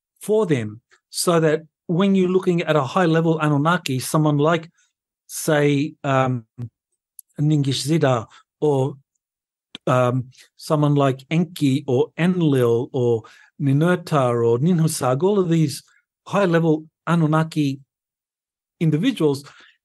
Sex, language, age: male, English, 50-69